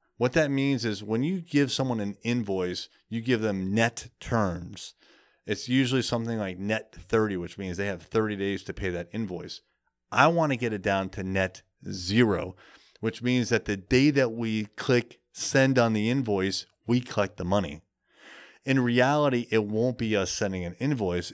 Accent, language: American, English